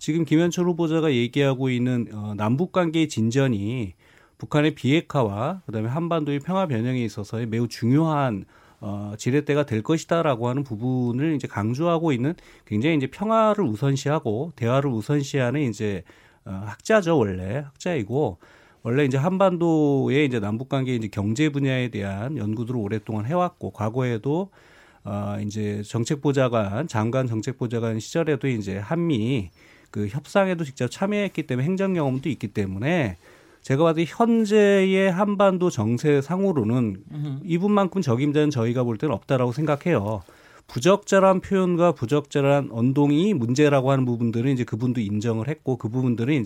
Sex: male